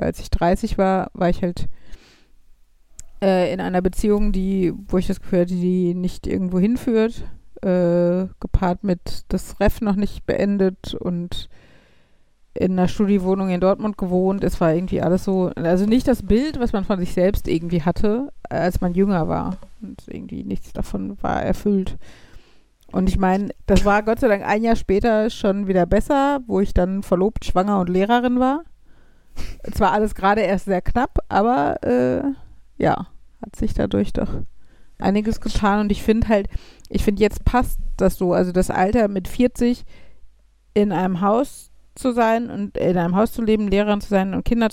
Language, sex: German, female